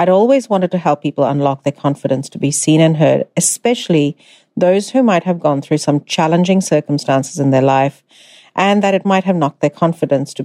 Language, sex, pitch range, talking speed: English, female, 150-200 Hz, 205 wpm